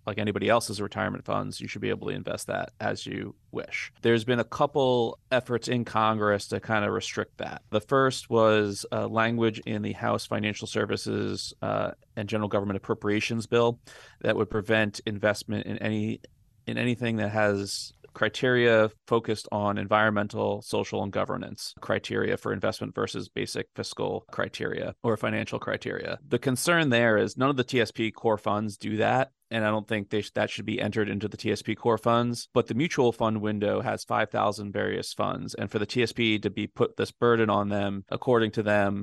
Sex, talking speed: male, 180 wpm